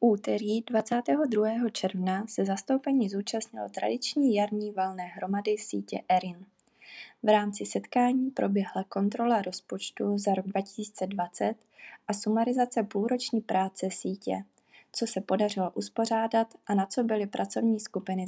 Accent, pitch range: native, 185-220 Hz